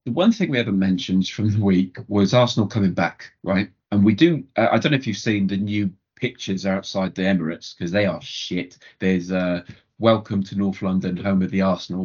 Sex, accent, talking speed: male, British, 225 wpm